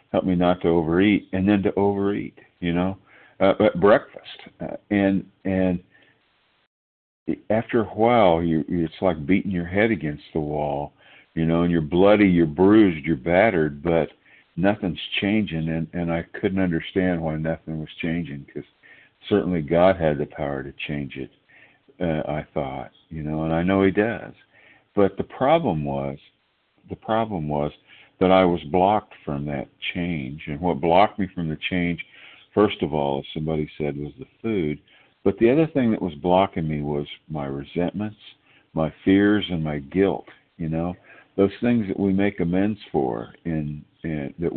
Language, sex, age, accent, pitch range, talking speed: English, male, 60-79, American, 75-100 Hz, 170 wpm